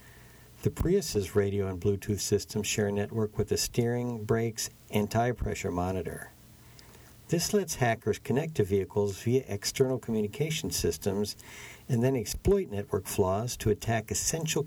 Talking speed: 135 wpm